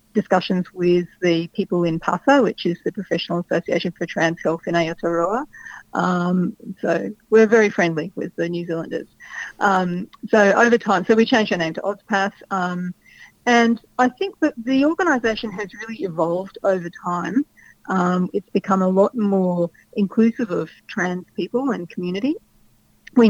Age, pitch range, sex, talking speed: 40-59, 175-215 Hz, female, 155 wpm